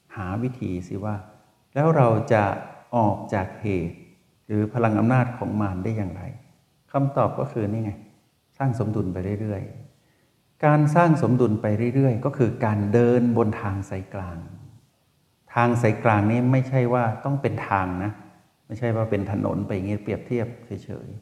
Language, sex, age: Thai, male, 60-79